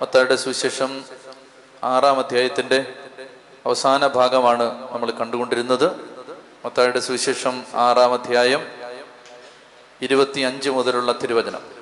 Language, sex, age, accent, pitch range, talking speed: Malayalam, male, 30-49, native, 130-155 Hz, 75 wpm